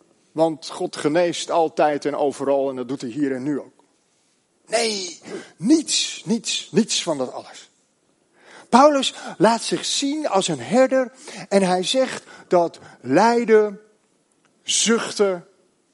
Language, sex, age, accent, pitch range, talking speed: Dutch, male, 40-59, Dutch, 155-230 Hz, 130 wpm